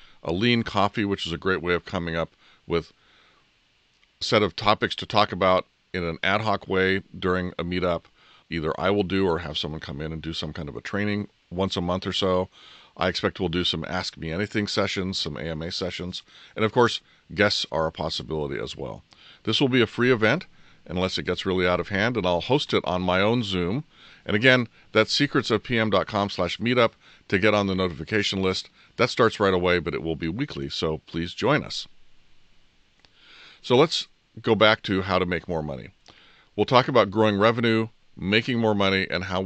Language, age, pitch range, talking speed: English, 40-59, 90-110 Hz, 205 wpm